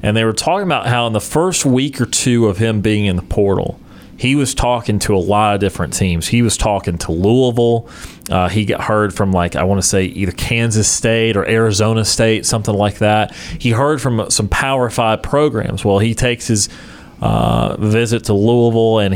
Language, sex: English, male